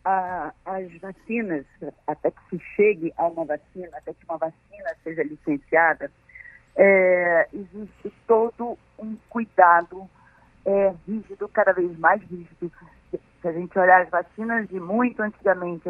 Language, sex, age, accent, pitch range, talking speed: Portuguese, female, 50-69, Brazilian, 170-215 Hz, 130 wpm